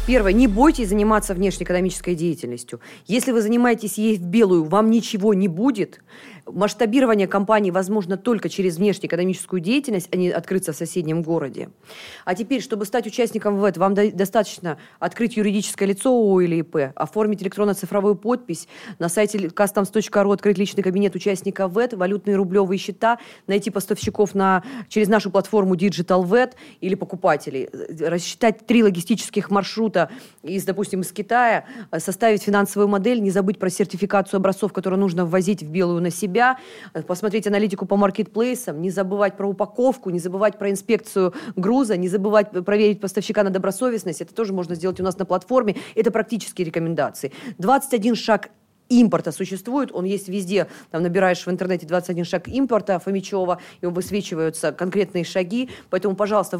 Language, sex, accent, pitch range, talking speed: Russian, female, native, 185-215 Hz, 150 wpm